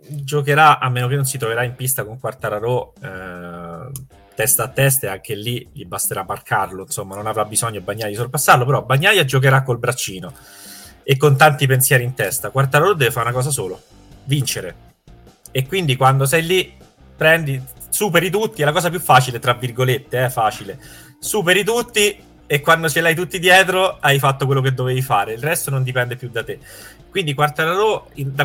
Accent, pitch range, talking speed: native, 120-150 Hz, 185 wpm